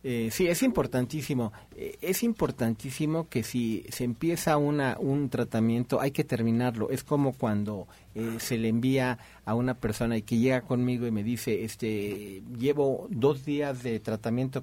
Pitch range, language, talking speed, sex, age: 115-140 Hz, Spanish, 165 wpm, male, 40-59